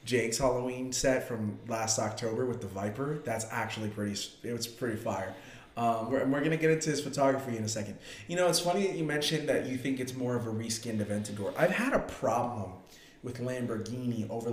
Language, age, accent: English, 30-49, American